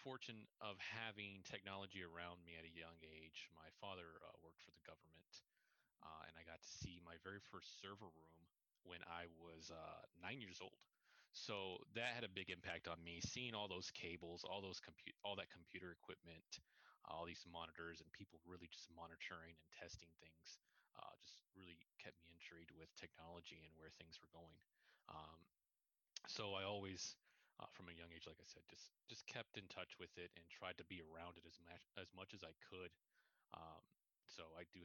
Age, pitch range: 30-49, 85-95 Hz